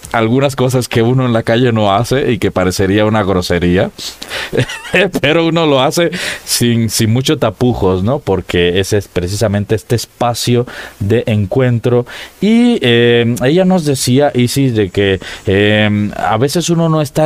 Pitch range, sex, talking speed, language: 105-135 Hz, male, 155 wpm, Spanish